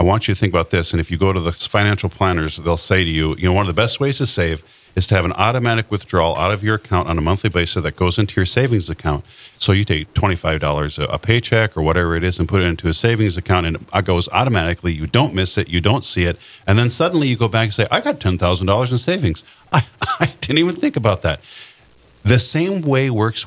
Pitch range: 85-115 Hz